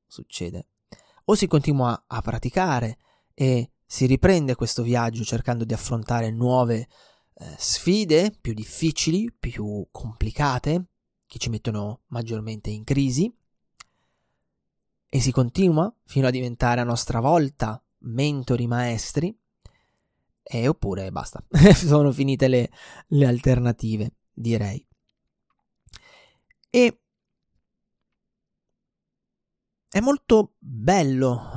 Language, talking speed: Italian, 95 wpm